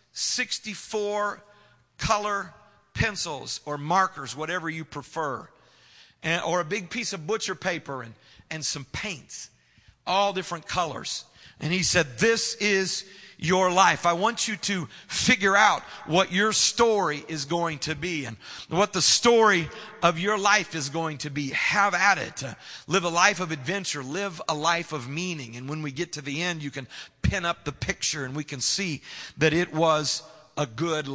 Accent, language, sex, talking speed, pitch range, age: American, English, male, 175 wpm, 150-195 Hz, 40-59